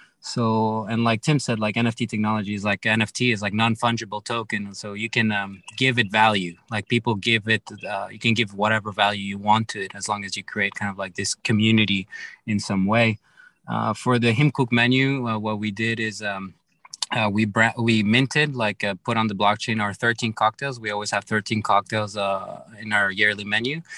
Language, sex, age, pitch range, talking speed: English, male, 20-39, 105-115 Hz, 210 wpm